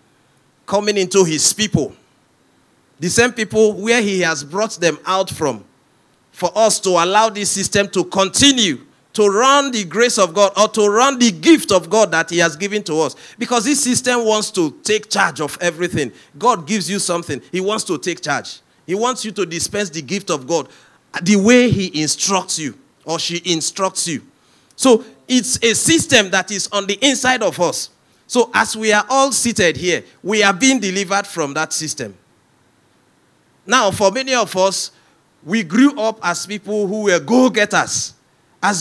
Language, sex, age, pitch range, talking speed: English, male, 40-59, 180-240 Hz, 180 wpm